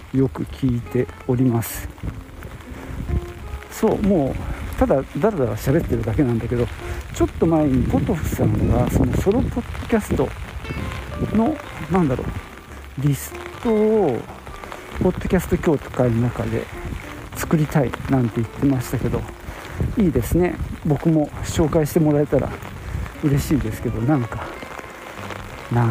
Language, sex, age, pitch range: Japanese, male, 50-69, 100-160 Hz